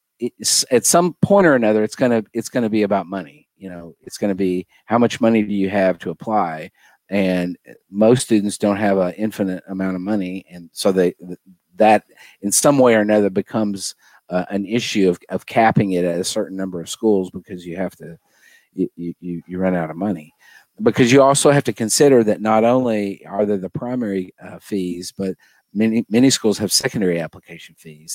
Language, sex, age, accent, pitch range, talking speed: English, male, 50-69, American, 95-115 Hz, 205 wpm